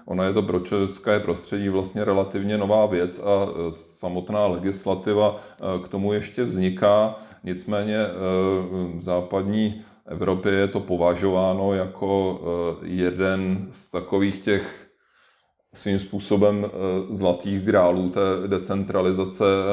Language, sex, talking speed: Czech, male, 105 wpm